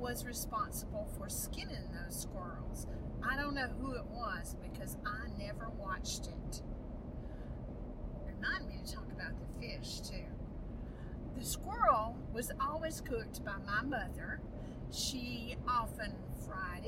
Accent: American